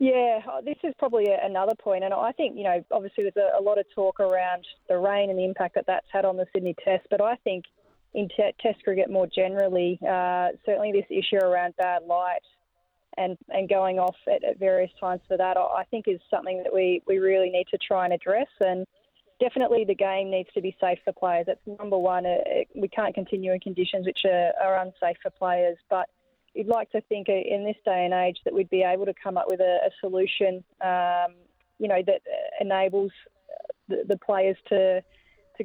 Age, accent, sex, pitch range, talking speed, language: 20-39, Australian, female, 185-210 Hz, 210 wpm, English